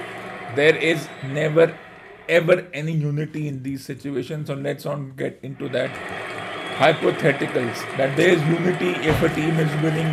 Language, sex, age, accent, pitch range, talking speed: English, male, 50-69, Indian, 150-180 Hz, 150 wpm